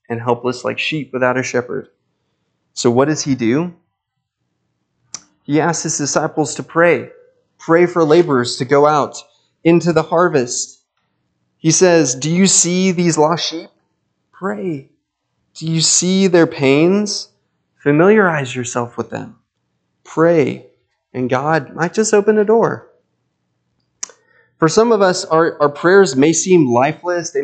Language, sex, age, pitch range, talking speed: English, male, 20-39, 125-170 Hz, 140 wpm